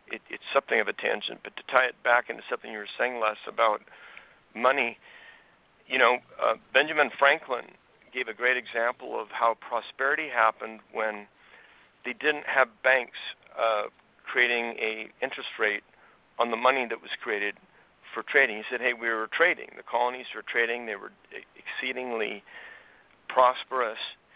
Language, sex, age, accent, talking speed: English, male, 50-69, American, 160 wpm